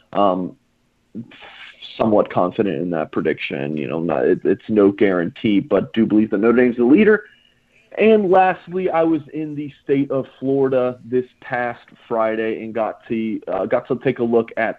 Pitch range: 100-125 Hz